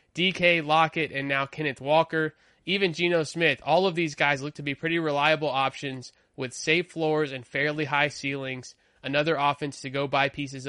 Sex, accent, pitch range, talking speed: male, American, 145-170 Hz, 180 wpm